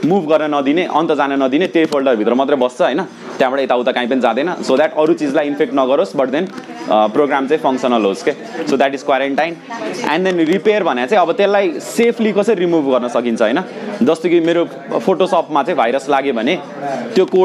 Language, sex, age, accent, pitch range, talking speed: English, male, 20-39, Indian, 135-175 Hz, 175 wpm